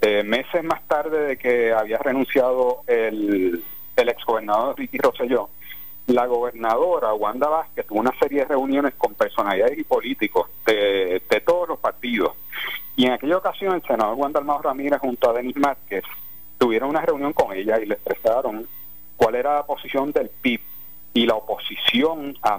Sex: male